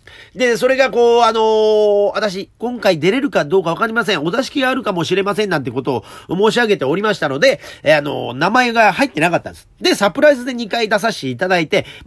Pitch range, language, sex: 135-215 Hz, Japanese, male